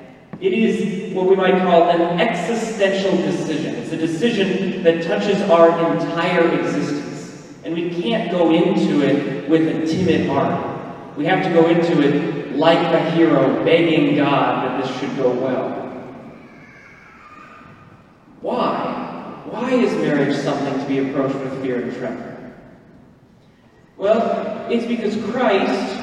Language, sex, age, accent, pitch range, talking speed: English, male, 30-49, American, 140-195 Hz, 135 wpm